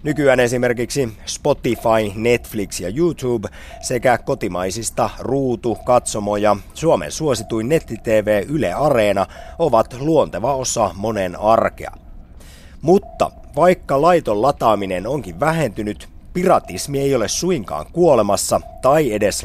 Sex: male